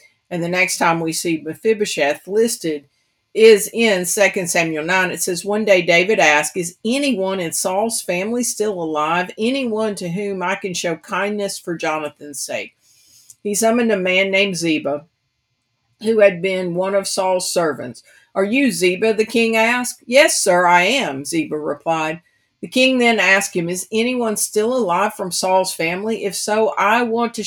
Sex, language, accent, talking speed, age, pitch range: female, English, American, 170 wpm, 50-69, 170-220 Hz